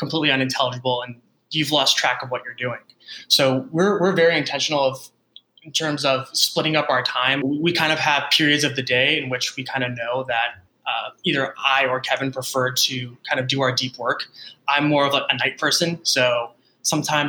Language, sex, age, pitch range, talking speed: English, male, 20-39, 130-155 Hz, 210 wpm